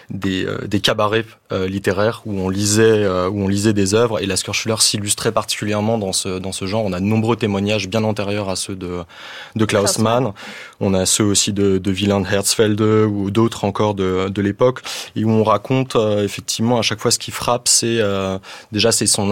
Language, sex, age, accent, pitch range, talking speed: French, male, 20-39, French, 95-110 Hz, 215 wpm